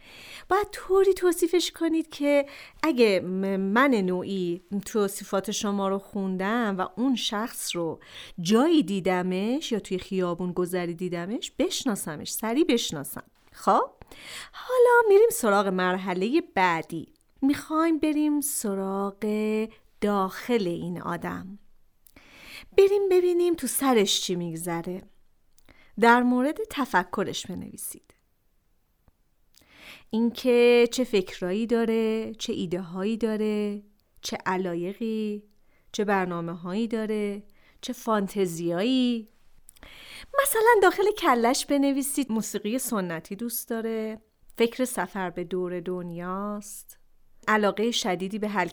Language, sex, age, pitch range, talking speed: Persian, female, 40-59, 190-260 Hz, 95 wpm